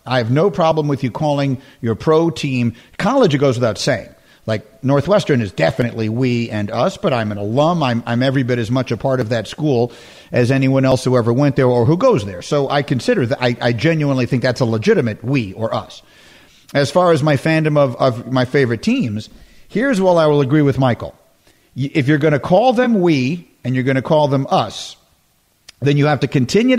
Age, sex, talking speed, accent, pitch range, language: 50-69, male, 220 wpm, American, 120-155 Hz, English